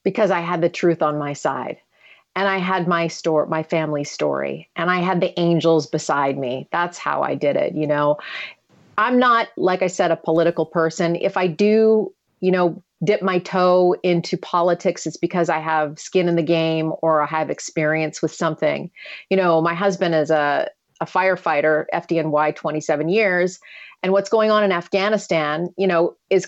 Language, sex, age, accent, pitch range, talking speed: English, female, 40-59, American, 160-190 Hz, 185 wpm